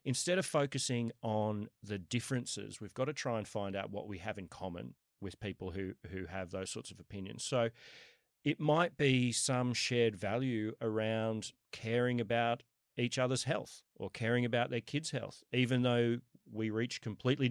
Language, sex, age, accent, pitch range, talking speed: English, male, 40-59, Australian, 105-130 Hz, 175 wpm